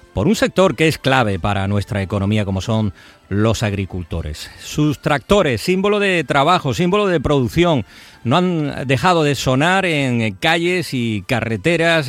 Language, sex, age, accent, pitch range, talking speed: Spanish, male, 50-69, Spanish, 110-155 Hz, 150 wpm